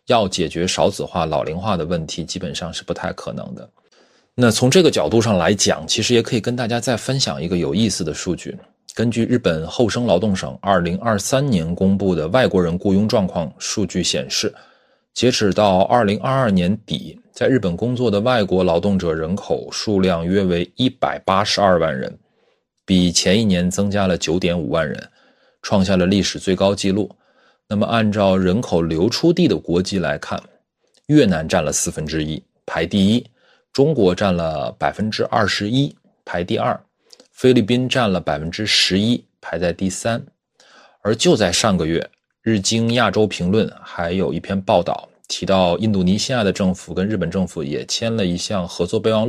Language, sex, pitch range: Chinese, male, 90-115 Hz